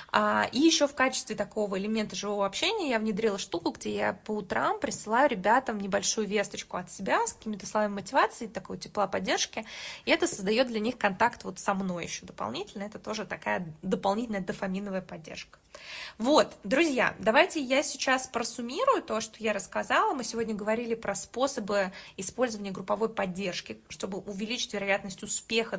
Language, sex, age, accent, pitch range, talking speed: Russian, female, 20-39, native, 195-235 Hz, 155 wpm